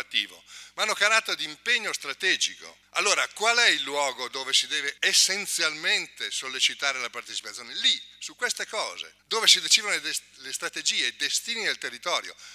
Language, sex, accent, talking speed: Italian, male, native, 155 wpm